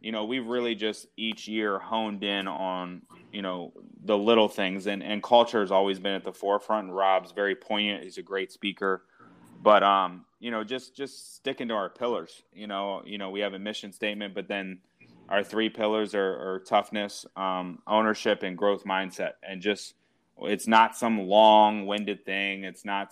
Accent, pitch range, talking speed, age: American, 95-105 Hz, 190 wpm, 20-39